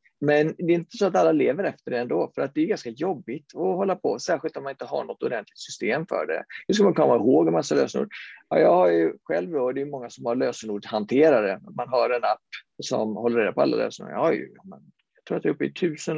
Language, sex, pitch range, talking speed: Swedish, male, 120-170 Hz, 265 wpm